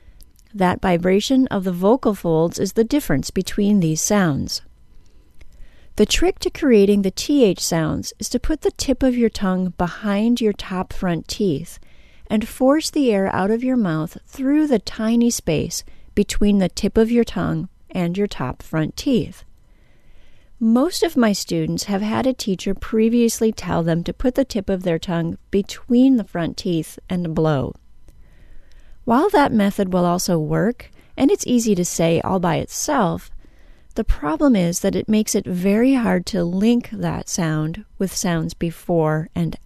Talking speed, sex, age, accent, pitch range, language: 165 wpm, female, 40-59, American, 170-225 Hz, English